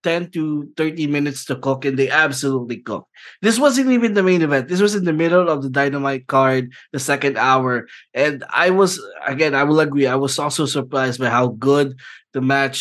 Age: 20-39